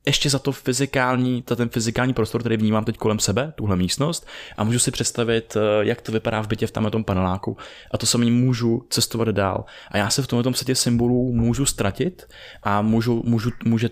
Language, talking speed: Czech, 205 wpm